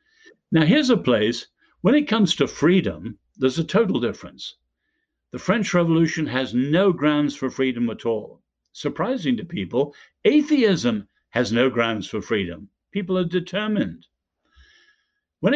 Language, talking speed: English, 140 wpm